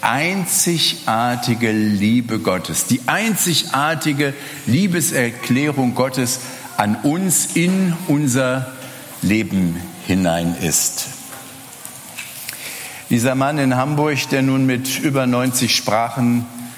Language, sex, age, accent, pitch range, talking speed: German, male, 60-79, German, 120-165 Hz, 85 wpm